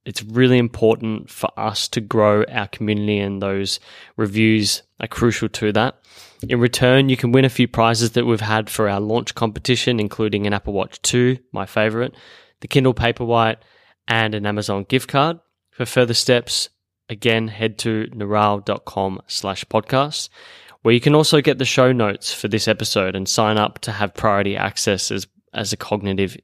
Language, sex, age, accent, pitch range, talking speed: English, male, 10-29, Australian, 100-120 Hz, 175 wpm